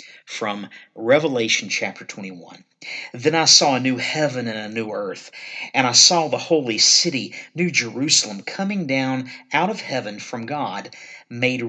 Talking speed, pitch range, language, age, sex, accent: 155 wpm, 120-170 Hz, English, 50-69, male, American